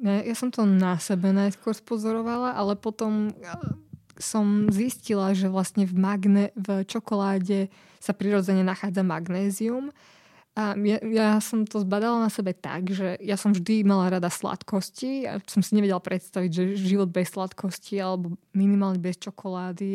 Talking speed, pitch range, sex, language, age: 155 wpm, 185-215 Hz, female, Slovak, 20-39